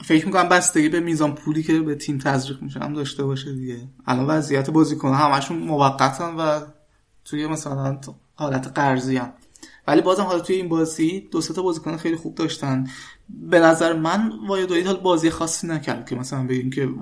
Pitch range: 130-160 Hz